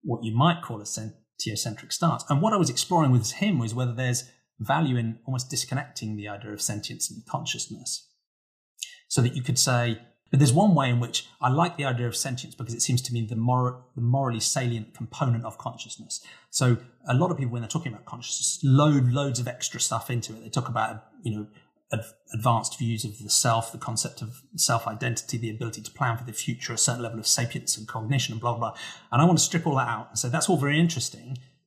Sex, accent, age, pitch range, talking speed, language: male, British, 30-49, 115-140 Hz, 235 wpm, English